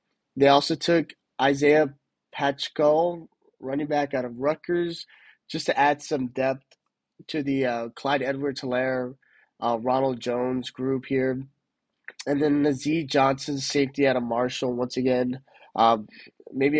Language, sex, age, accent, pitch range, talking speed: English, male, 20-39, American, 130-150 Hz, 130 wpm